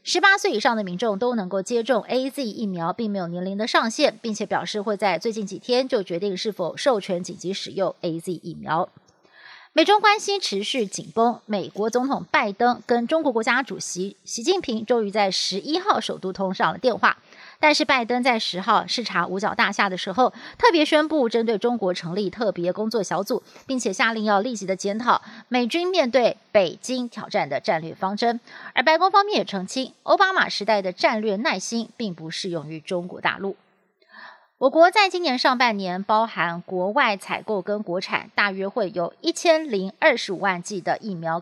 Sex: female